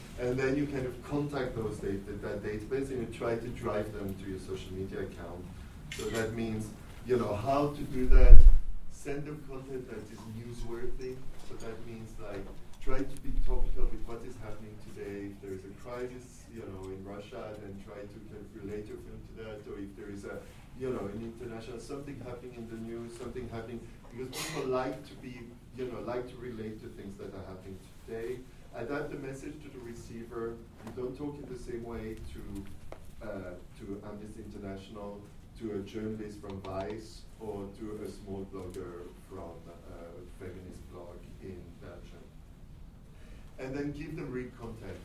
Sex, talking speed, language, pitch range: male, 185 wpm, English, 95-125 Hz